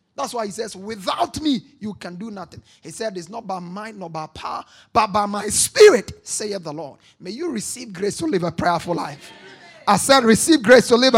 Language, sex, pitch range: English, male, 195-295 Hz